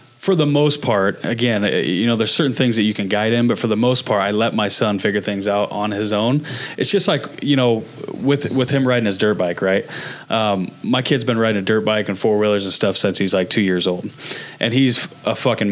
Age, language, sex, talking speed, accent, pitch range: 30-49, English, male, 250 wpm, American, 110-140 Hz